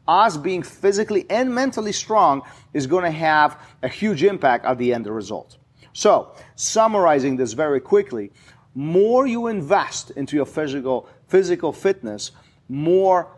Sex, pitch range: male, 130-180 Hz